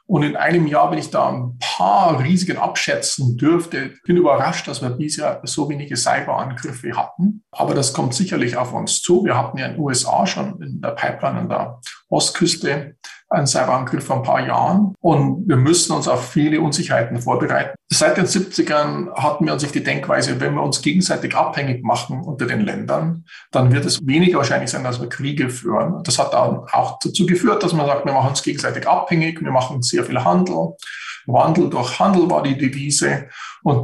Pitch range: 130-170 Hz